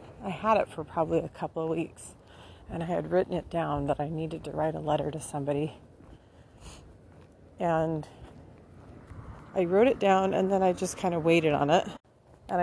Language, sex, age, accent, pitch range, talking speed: English, female, 40-59, American, 145-175 Hz, 185 wpm